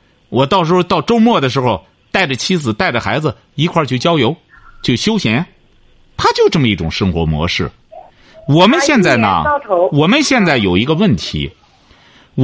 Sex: male